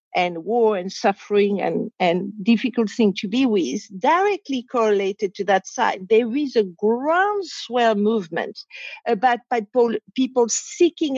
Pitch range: 210-295 Hz